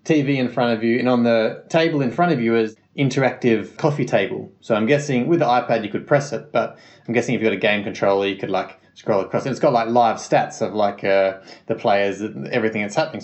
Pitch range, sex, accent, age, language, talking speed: 105-125 Hz, male, Australian, 20-39, English, 255 wpm